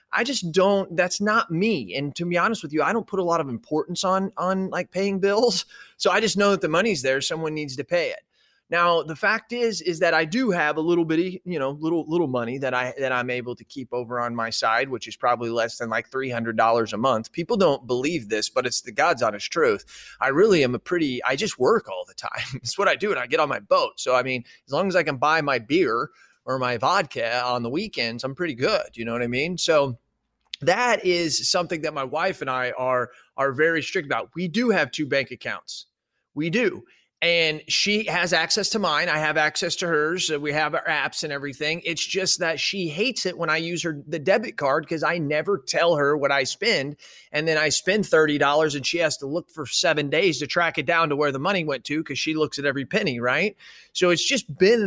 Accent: American